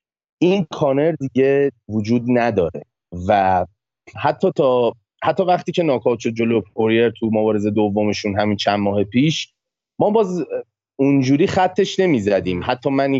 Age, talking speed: 30-49, 130 wpm